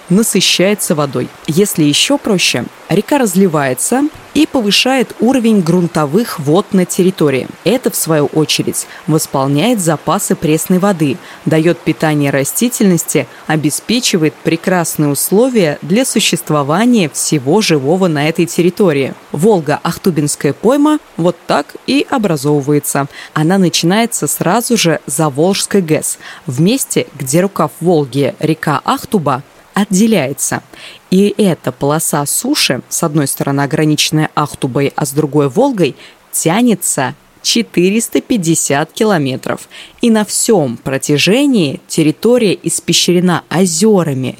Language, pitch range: Russian, 150-210 Hz